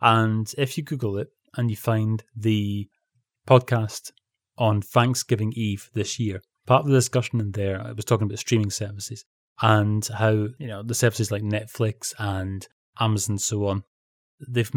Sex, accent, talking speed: male, British, 165 wpm